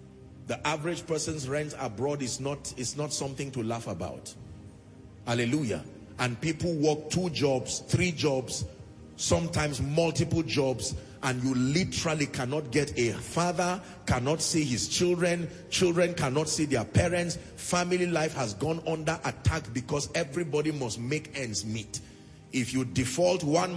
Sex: male